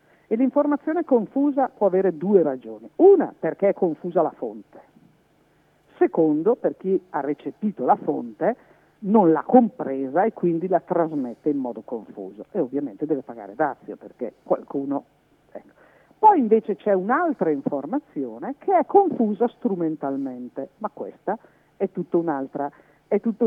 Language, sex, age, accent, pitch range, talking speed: Italian, female, 50-69, native, 155-215 Hz, 130 wpm